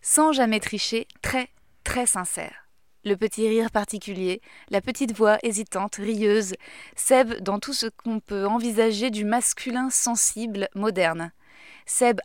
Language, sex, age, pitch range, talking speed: French, female, 20-39, 200-245 Hz, 130 wpm